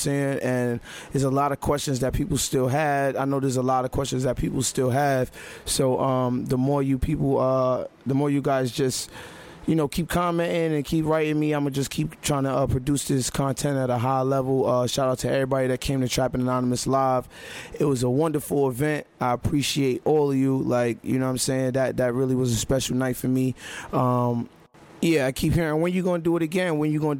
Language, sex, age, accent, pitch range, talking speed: English, male, 20-39, American, 130-155 Hz, 235 wpm